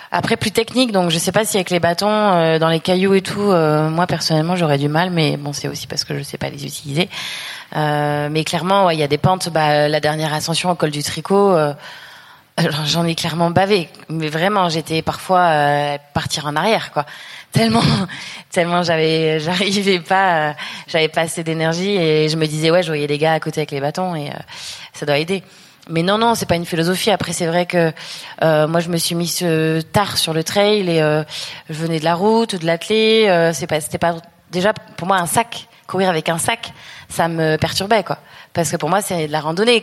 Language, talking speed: French, 225 wpm